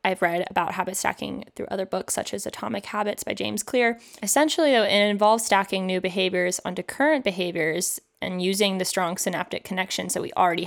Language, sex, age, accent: English, female, 20-39, American